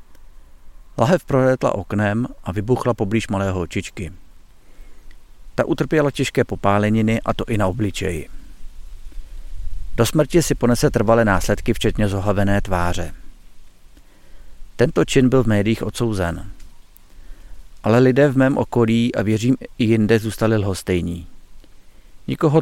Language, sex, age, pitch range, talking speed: Czech, male, 50-69, 95-120 Hz, 115 wpm